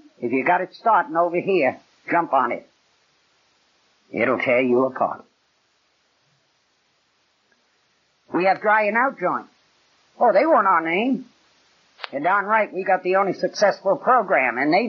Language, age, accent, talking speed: English, 60-79, American, 135 wpm